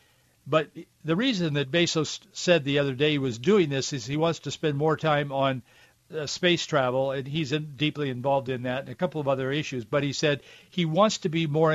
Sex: male